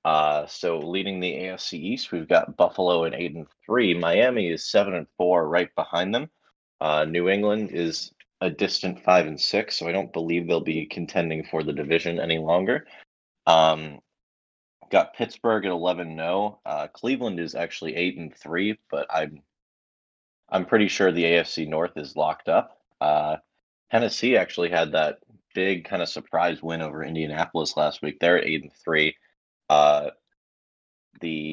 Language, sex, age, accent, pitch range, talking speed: English, male, 20-39, American, 75-85 Hz, 165 wpm